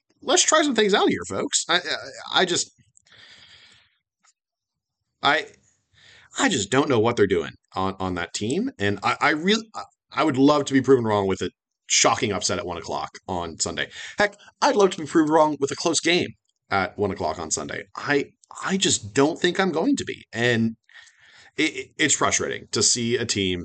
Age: 30-49